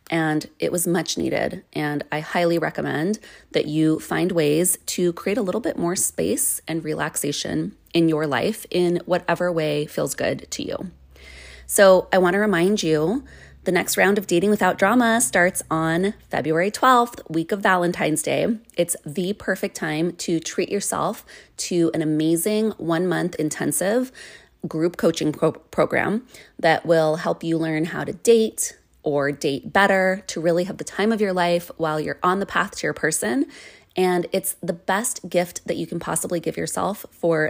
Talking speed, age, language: 170 wpm, 20-39, English